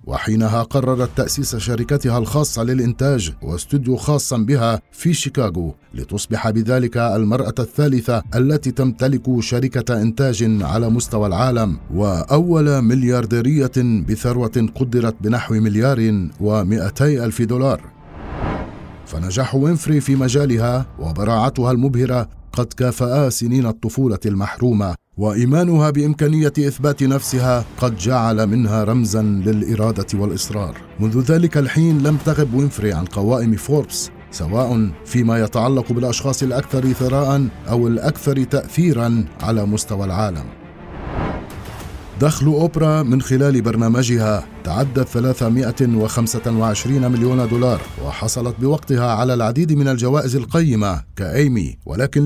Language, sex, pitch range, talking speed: Arabic, male, 110-130 Hz, 105 wpm